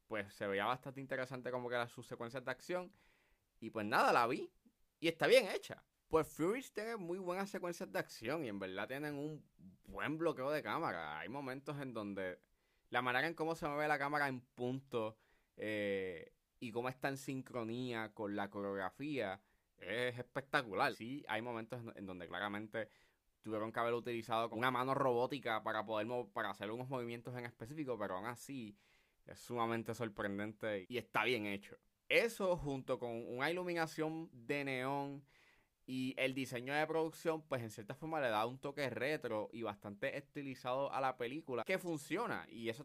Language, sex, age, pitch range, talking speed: Spanish, male, 20-39, 110-145 Hz, 180 wpm